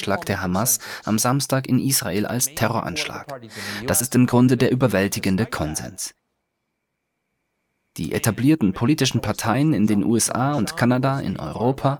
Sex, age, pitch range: male, 30-49, 105-130 Hz